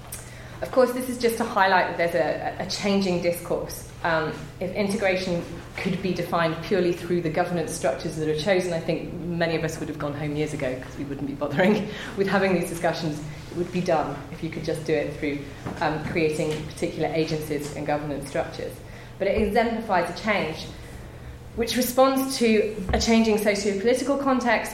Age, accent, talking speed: 30-49, British, 185 wpm